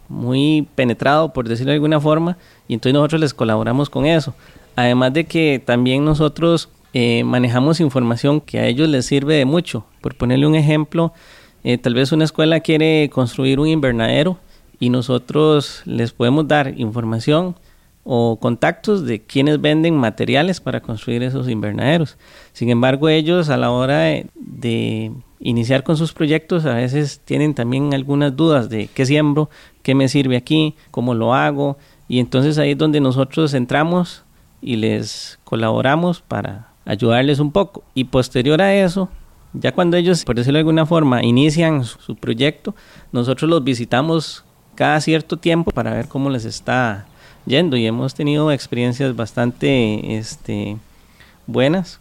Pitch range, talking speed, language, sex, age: 120-155 Hz, 155 wpm, Spanish, male, 30-49